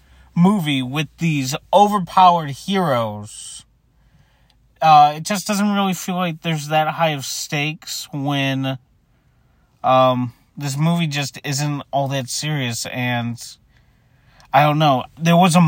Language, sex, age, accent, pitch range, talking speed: English, male, 30-49, American, 130-170 Hz, 125 wpm